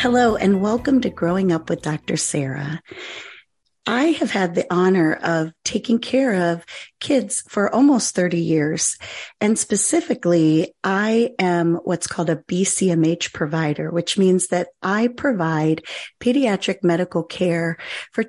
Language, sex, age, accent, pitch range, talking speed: English, female, 40-59, American, 170-230 Hz, 135 wpm